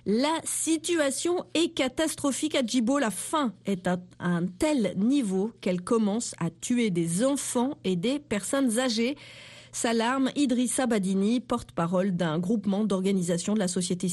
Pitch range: 190-275 Hz